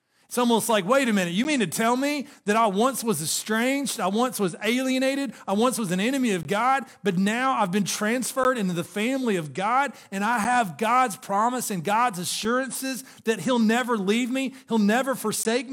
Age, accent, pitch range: 40-59, American, 160-245 Hz